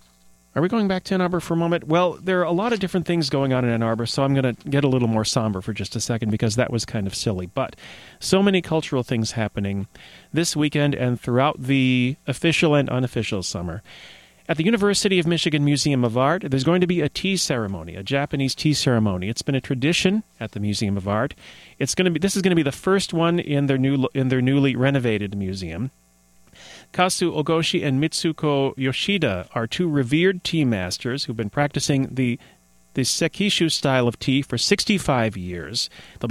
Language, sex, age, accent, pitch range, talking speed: English, male, 40-59, American, 120-165 Hz, 210 wpm